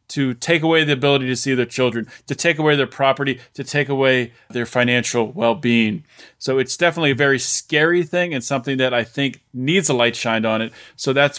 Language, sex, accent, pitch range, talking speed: English, male, American, 125-150 Hz, 210 wpm